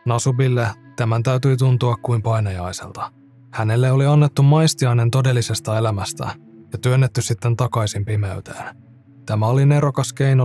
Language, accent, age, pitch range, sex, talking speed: Finnish, native, 20-39, 115-135 Hz, male, 120 wpm